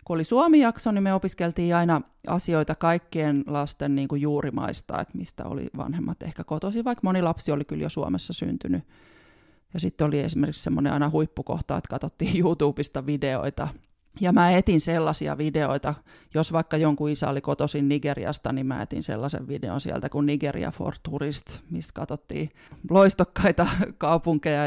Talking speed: 155 wpm